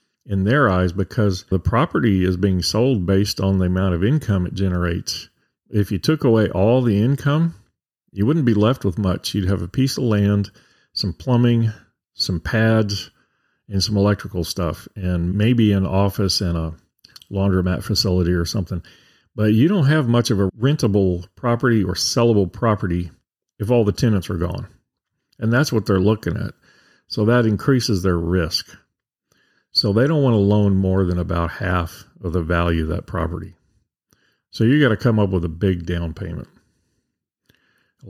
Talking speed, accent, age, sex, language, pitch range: 175 wpm, American, 40-59, male, English, 90-110 Hz